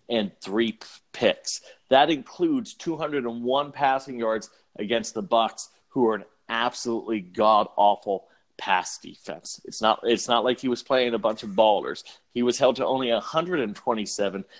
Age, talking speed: 40-59, 150 wpm